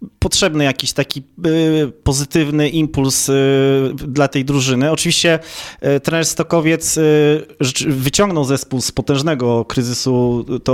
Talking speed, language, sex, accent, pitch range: 95 wpm, Polish, male, native, 125-150 Hz